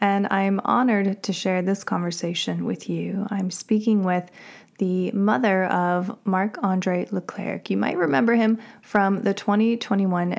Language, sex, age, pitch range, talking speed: English, female, 20-39, 175-210 Hz, 140 wpm